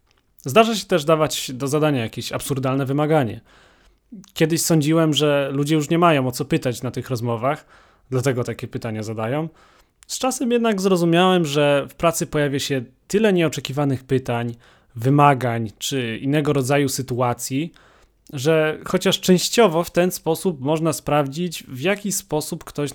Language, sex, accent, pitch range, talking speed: Polish, male, native, 130-160 Hz, 145 wpm